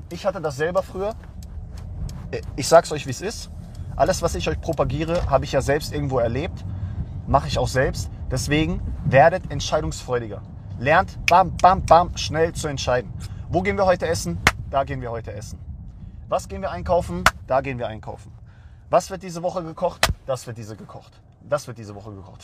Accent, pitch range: German, 105-170 Hz